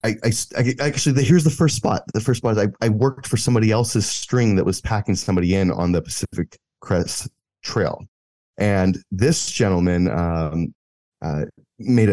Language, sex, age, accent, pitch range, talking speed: English, male, 30-49, American, 85-115 Hz, 180 wpm